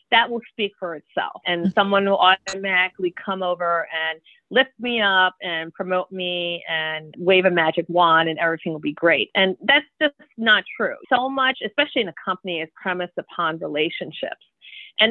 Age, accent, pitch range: 40-59, American, 175-215 Hz